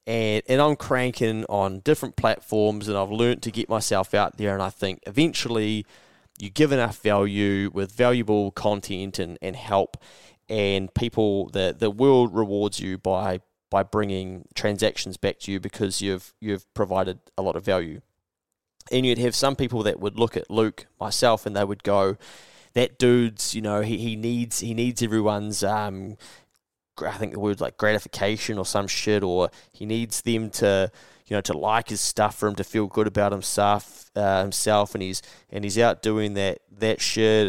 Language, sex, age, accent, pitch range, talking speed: English, male, 20-39, Australian, 100-115 Hz, 185 wpm